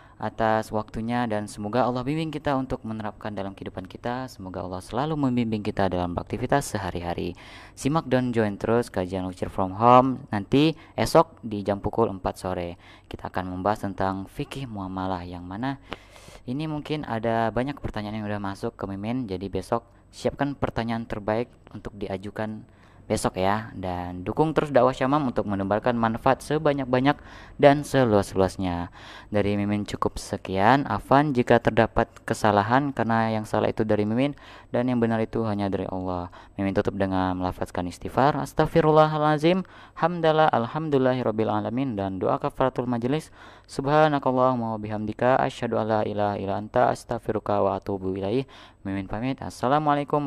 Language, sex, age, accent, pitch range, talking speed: Indonesian, female, 20-39, native, 100-130 Hz, 140 wpm